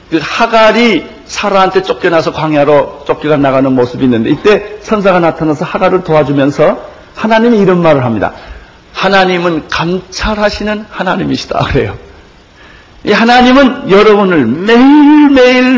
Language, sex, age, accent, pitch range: Korean, male, 60-79, native, 145-205 Hz